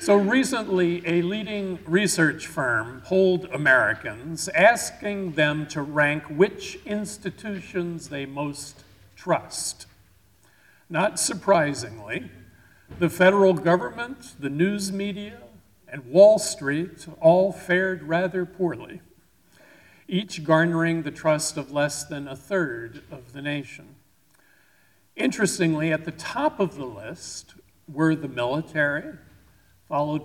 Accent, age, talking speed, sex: American, 50-69, 110 wpm, male